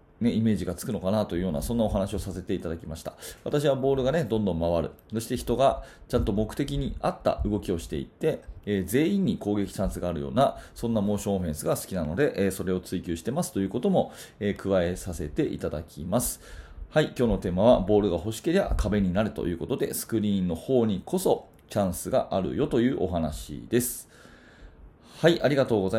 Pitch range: 90-120 Hz